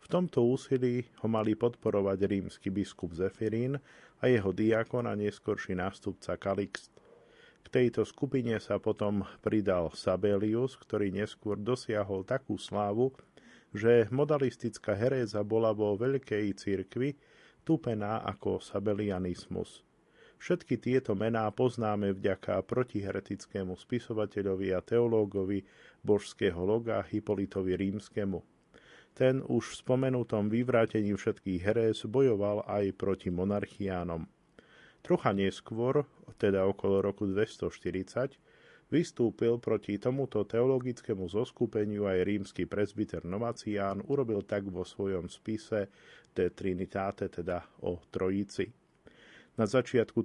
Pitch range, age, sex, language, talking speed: 100-120 Hz, 40-59, male, Slovak, 105 wpm